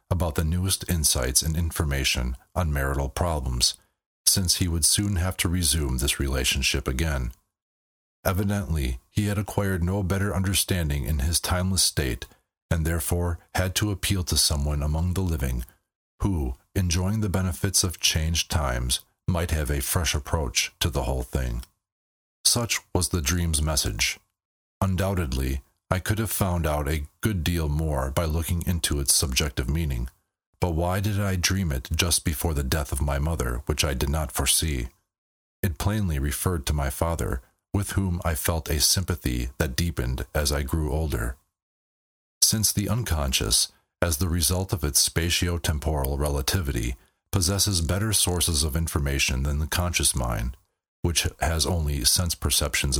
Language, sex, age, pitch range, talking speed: English, male, 40-59, 70-95 Hz, 155 wpm